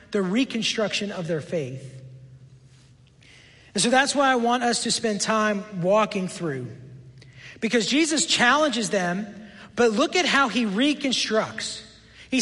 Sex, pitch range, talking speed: male, 180-275 Hz, 135 wpm